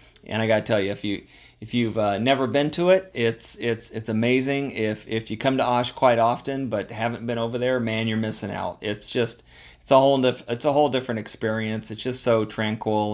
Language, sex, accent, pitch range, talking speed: English, male, American, 105-120 Hz, 230 wpm